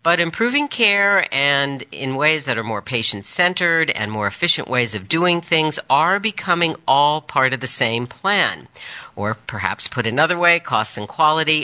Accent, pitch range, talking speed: American, 115-160 Hz, 170 wpm